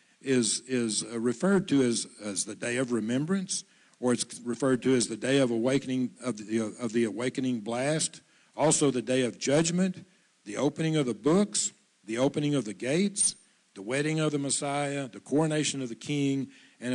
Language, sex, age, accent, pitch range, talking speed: English, male, 50-69, American, 120-140 Hz, 185 wpm